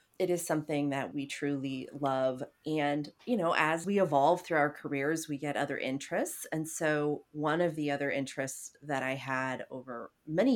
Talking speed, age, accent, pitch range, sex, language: 180 wpm, 30-49, American, 135-155 Hz, female, English